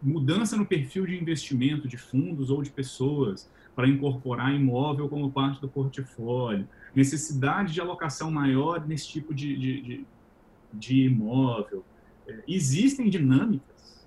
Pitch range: 120-155 Hz